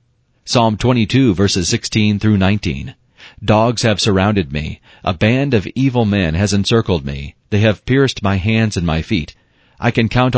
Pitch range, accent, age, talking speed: 95-120 Hz, American, 40-59, 160 wpm